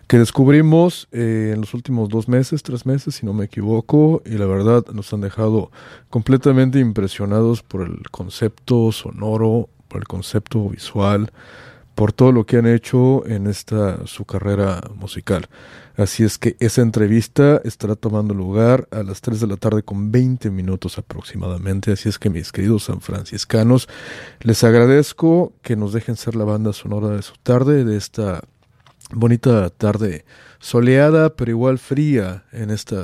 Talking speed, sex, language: 160 wpm, male, English